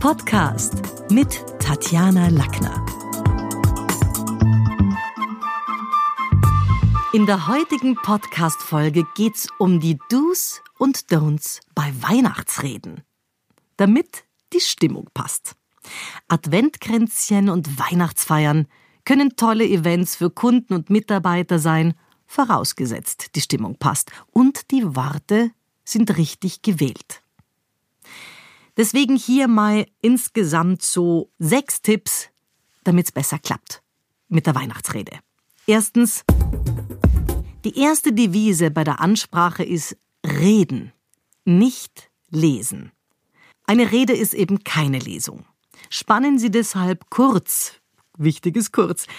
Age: 50-69